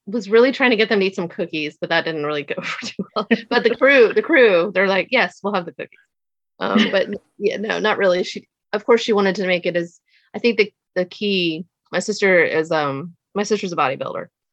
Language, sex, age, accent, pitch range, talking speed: English, female, 30-49, American, 165-215 Hz, 240 wpm